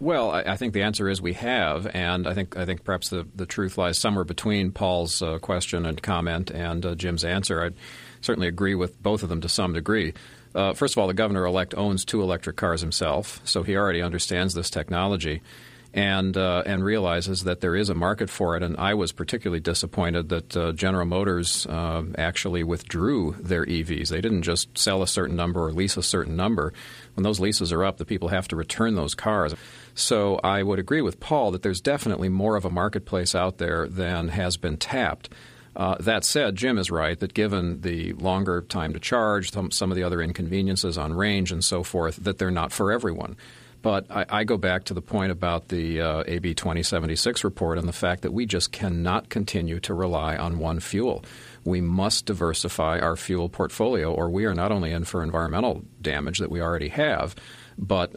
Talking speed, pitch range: 205 wpm, 85-100 Hz